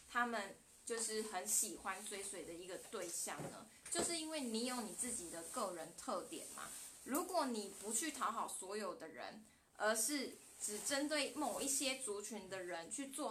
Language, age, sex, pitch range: Chinese, 20-39, female, 195-255 Hz